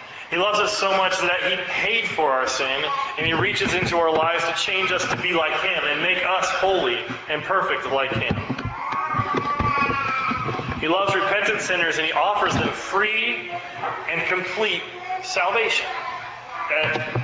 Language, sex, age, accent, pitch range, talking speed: English, male, 30-49, American, 170-220 Hz, 155 wpm